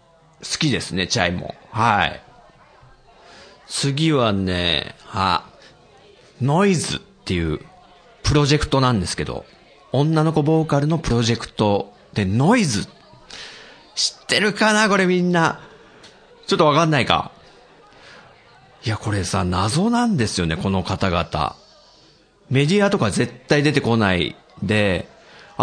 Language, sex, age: Japanese, male, 40-59